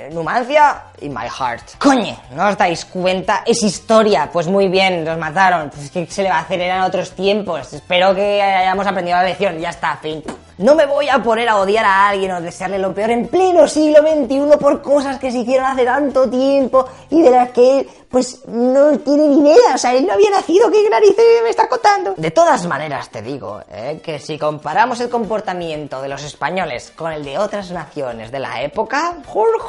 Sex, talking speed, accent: female, 210 wpm, Spanish